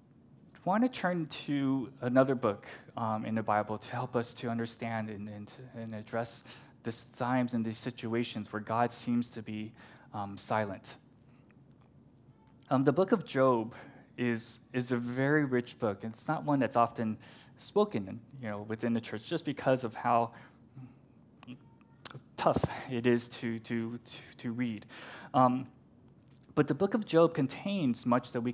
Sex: male